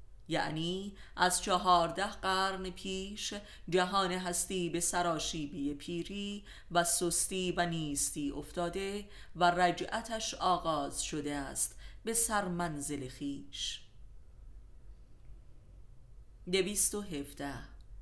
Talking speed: 80 wpm